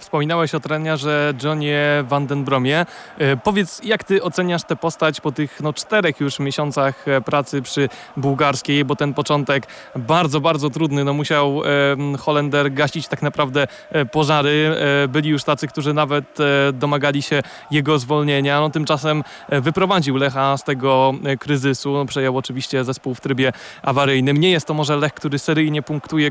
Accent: native